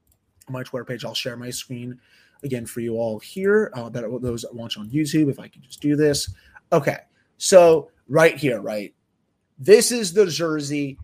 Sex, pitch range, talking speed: male, 130-155 Hz, 190 wpm